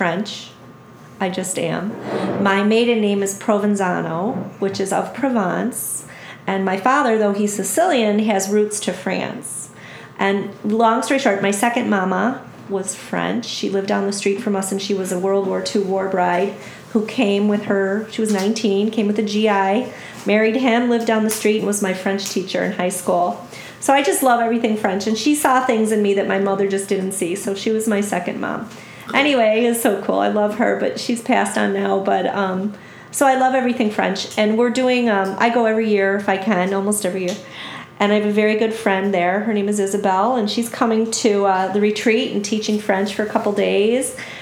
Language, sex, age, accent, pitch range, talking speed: English, female, 40-59, American, 195-230 Hz, 210 wpm